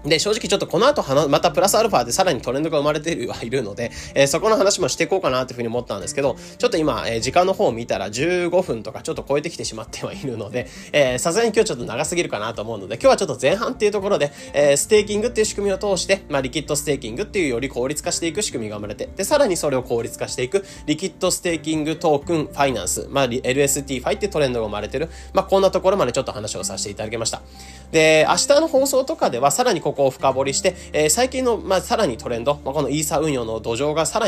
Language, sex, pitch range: Japanese, male, 125-190 Hz